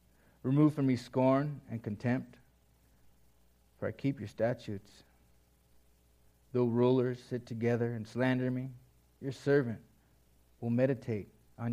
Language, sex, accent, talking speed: English, male, American, 120 wpm